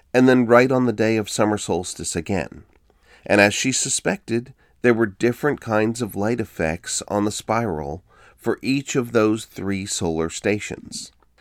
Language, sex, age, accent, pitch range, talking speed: English, male, 40-59, American, 95-120 Hz, 165 wpm